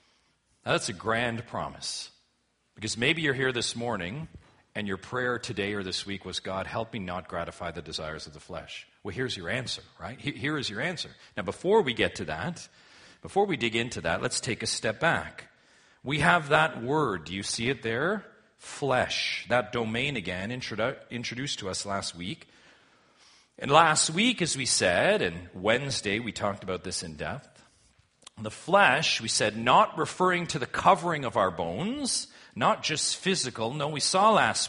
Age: 40-59